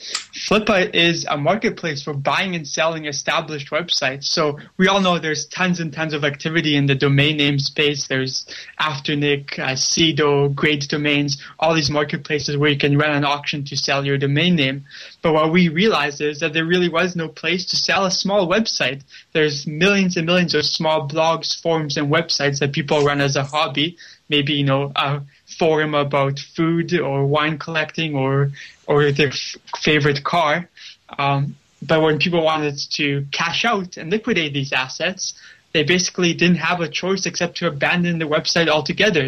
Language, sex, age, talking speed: English, male, 20-39, 180 wpm